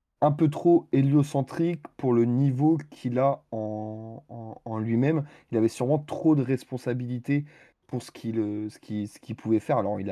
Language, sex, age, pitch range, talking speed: French, male, 20-39, 110-135 Hz, 180 wpm